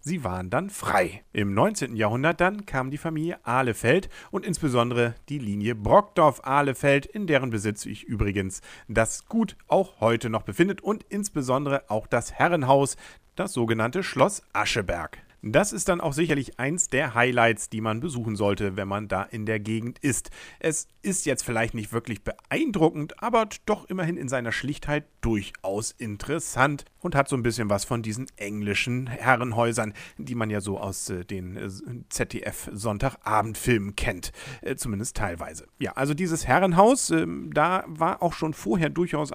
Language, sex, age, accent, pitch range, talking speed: English, male, 40-59, German, 110-160 Hz, 160 wpm